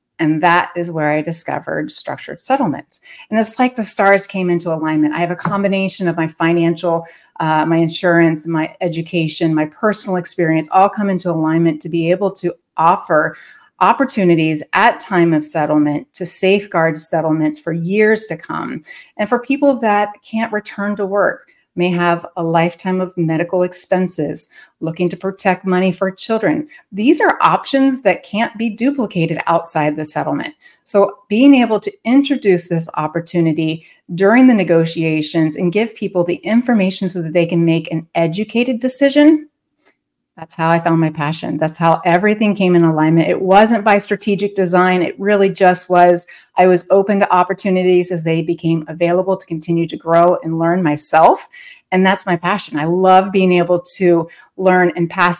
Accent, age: American, 30-49